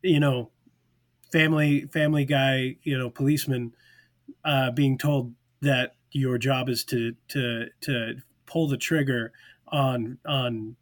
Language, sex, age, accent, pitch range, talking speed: English, male, 30-49, American, 130-160 Hz, 130 wpm